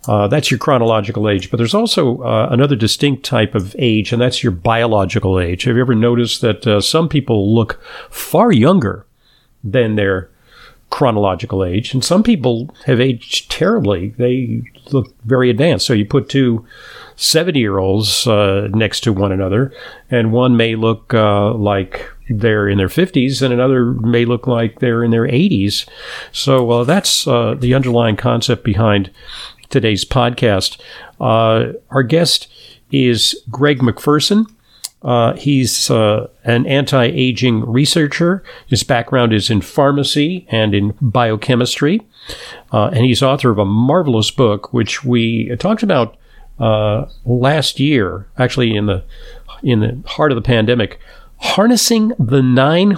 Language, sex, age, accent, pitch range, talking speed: English, male, 50-69, American, 110-135 Hz, 145 wpm